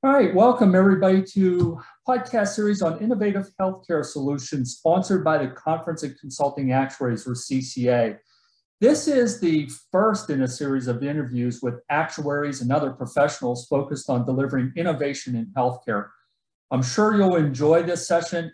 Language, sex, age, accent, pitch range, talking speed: English, male, 40-59, American, 130-165 Hz, 150 wpm